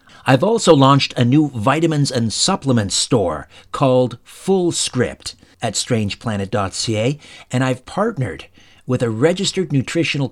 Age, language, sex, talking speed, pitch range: 50-69, English, male, 115 wpm, 115-155 Hz